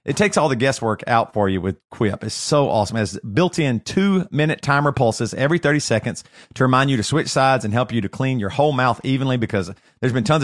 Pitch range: 110-160 Hz